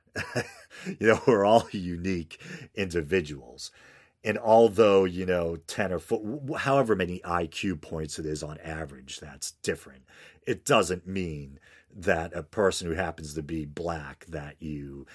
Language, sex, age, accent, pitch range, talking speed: English, male, 40-59, American, 75-90 Hz, 140 wpm